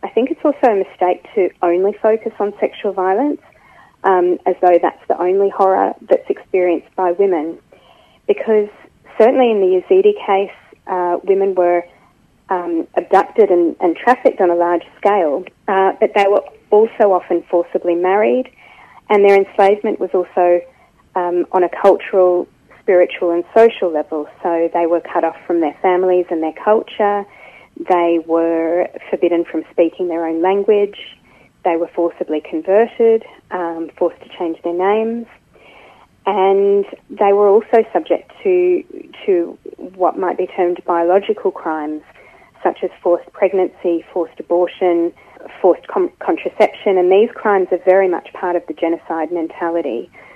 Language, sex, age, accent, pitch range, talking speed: English, female, 30-49, Australian, 175-210 Hz, 150 wpm